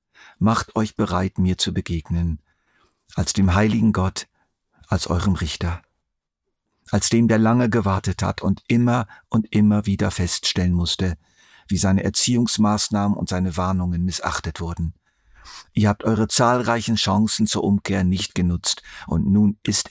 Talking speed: 140 wpm